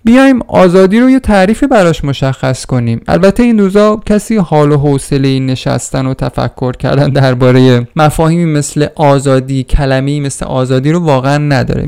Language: Persian